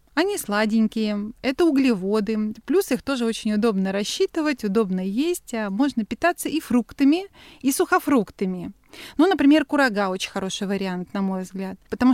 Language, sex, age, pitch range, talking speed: Russian, female, 30-49, 215-285 Hz, 140 wpm